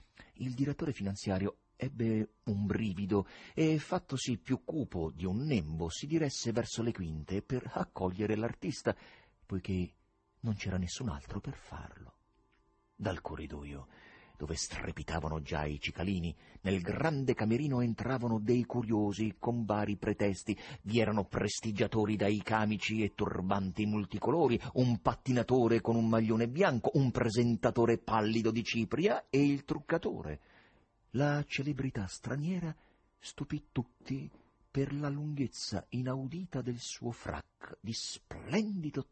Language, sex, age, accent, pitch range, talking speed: Italian, male, 40-59, native, 95-135 Hz, 125 wpm